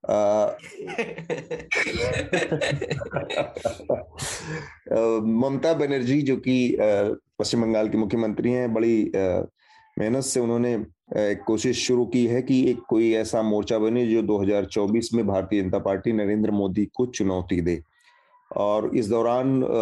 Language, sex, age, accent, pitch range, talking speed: Hindi, male, 30-49, native, 110-130 Hz, 115 wpm